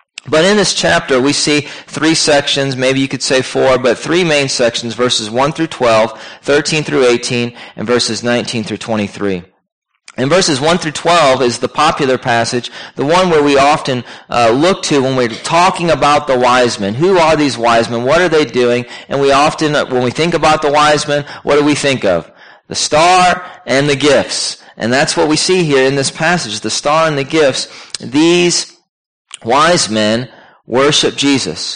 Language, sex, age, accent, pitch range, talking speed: English, male, 40-59, American, 120-155 Hz, 190 wpm